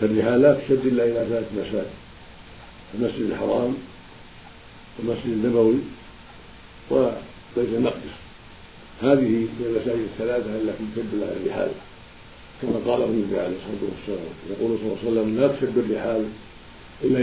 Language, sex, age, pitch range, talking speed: Arabic, male, 50-69, 110-120 Hz, 125 wpm